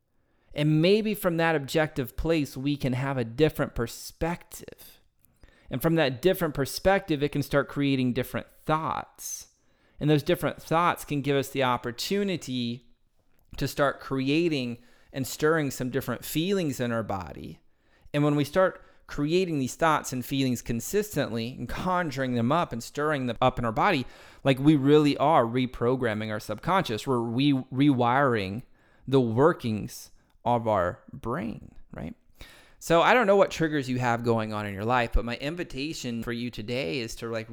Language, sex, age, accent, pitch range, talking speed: English, male, 30-49, American, 120-160 Hz, 165 wpm